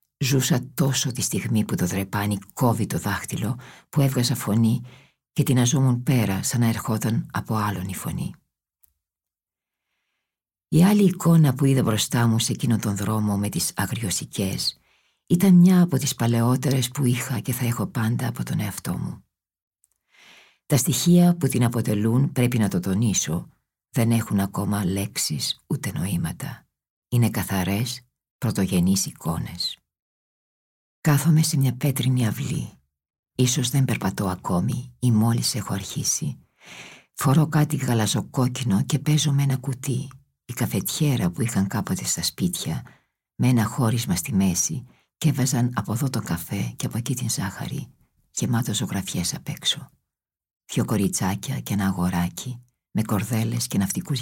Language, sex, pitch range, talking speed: Greek, female, 100-135 Hz, 145 wpm